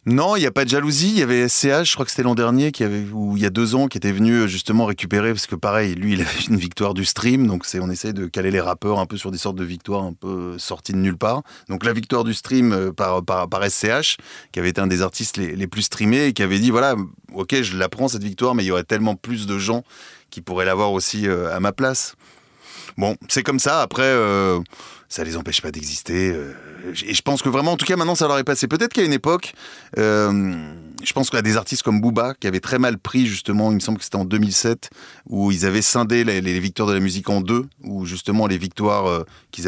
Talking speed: 260 wpm